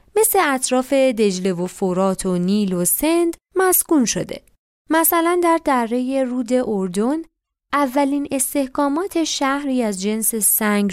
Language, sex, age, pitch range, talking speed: Persian, female, 20-39, 200-275 Hz, 120 wpm